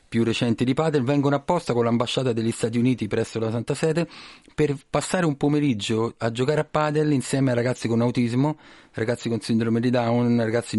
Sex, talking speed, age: male, 190 wpm, 40-59